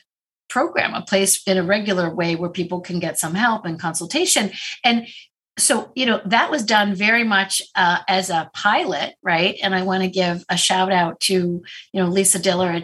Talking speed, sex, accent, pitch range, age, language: 200 wpm, female, American, 175-215 Hz, 40-59, English